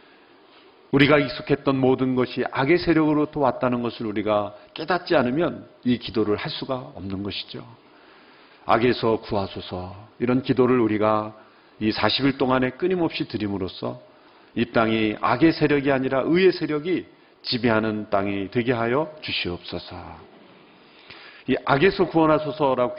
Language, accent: Korean, native